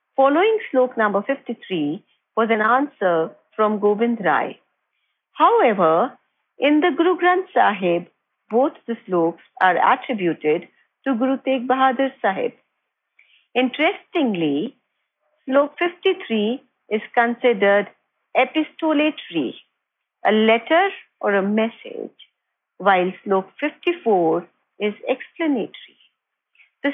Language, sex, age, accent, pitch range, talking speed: English, female, 50-69, Indian, 200-290 Hz, 95 wpm